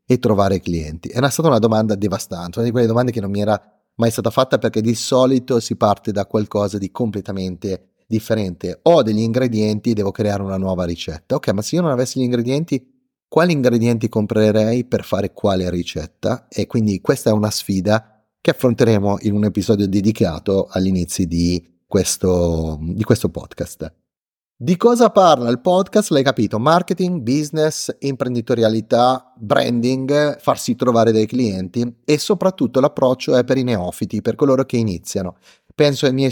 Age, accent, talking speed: 30-49, native, 165 wpm